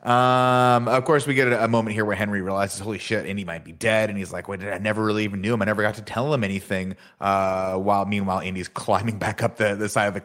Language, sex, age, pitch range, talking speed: English, male, 30-49, 90-105 Hz, 275 wpm